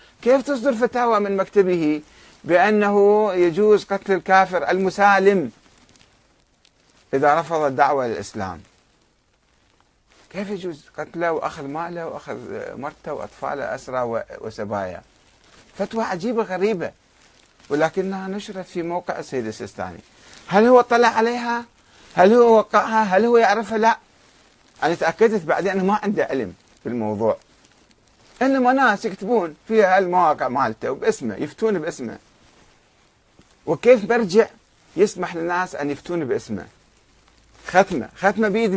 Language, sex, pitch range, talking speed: Arabic, male, 170-225 Hz, 110 wpm